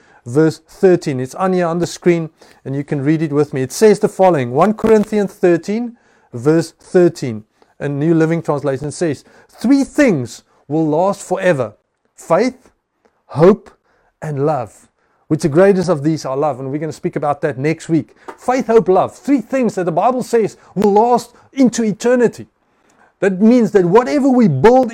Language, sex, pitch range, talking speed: English, male, 160-220 Hz, 175 wpm